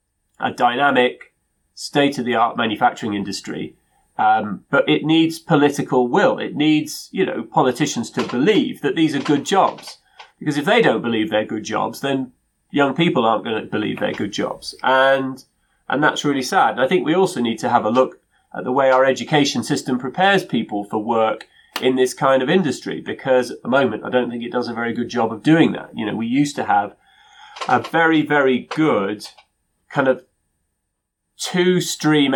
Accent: British